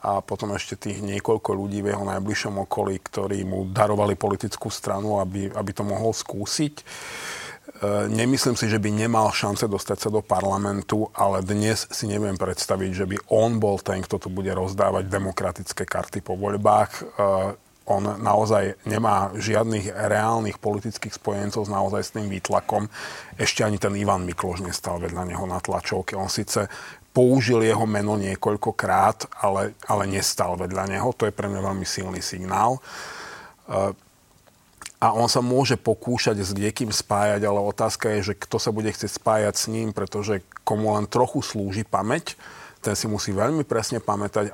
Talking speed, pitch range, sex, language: 165 wpm, 100-110 Hz, male, Slovak